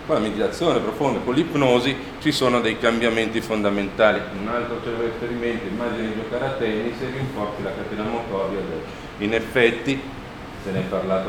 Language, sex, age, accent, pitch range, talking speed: Italian, male, 40-59, native, 95-115 Hz, 165 wpm